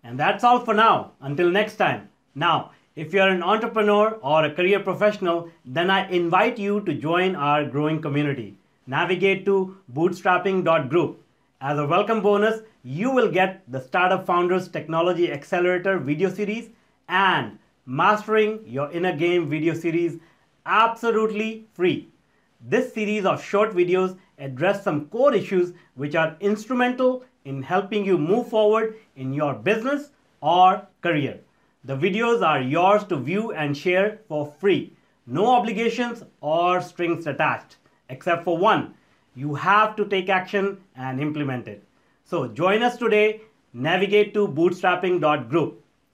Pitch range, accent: 155-210 Hz, Indian